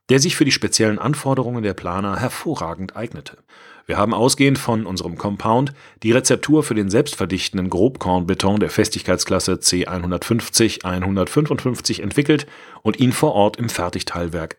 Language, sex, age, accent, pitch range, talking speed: German, male, 40-59, German, 95-125 Hz, 130 wpm